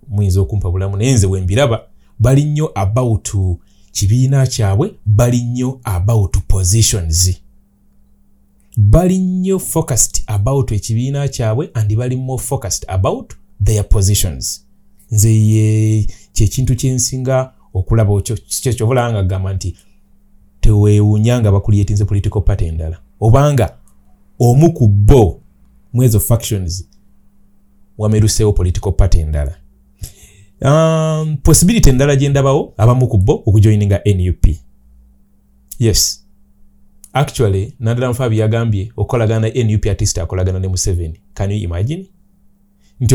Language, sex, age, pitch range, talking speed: English, male, 30-49, 95-120 Hz, 115 wpm